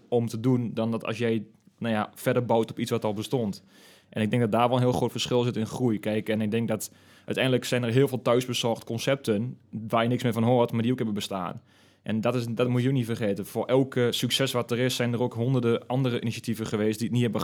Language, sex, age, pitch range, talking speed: Dutch, male, 20-39, 110-125 Hz, 270 wpm